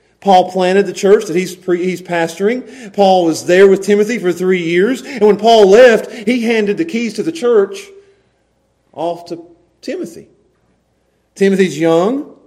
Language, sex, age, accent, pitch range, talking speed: English, male, 40-59, American, 180-265 Hz, 155 wpm